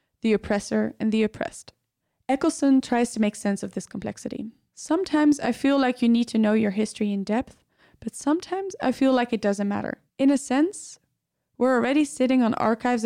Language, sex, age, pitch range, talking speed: English, female, 20-39, 215-255 Hz, 190 wpm